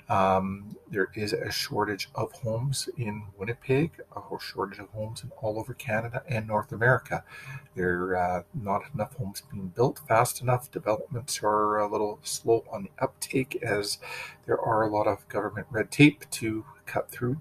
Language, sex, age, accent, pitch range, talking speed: English, male, 40-59, American, 105-135 Hz, 175 wpm